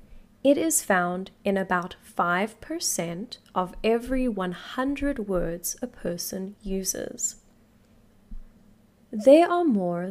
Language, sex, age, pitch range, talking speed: English, female, 10-29, 190-255 Hz, 95 wpm